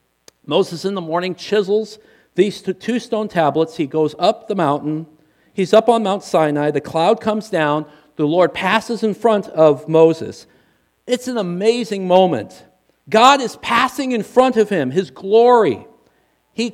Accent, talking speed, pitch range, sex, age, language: American, 160 wpm, 170-230 Hz, male, 50-69, English